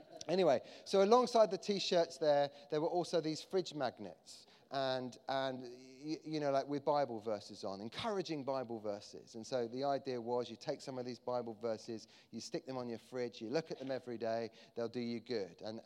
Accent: British